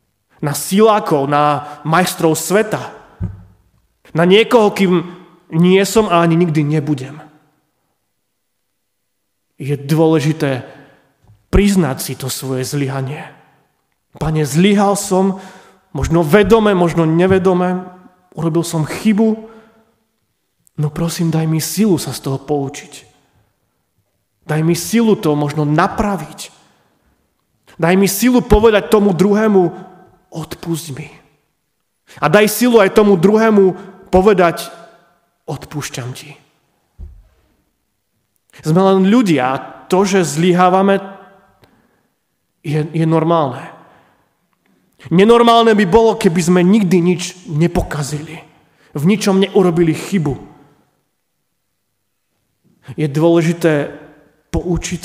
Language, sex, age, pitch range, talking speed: Slovak, male, 30-49, 145-190 Hz, 95 wpm